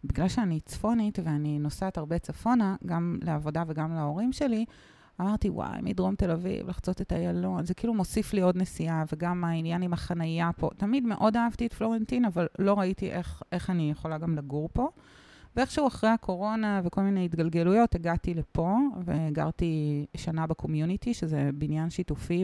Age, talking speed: 30-49, 165 wpm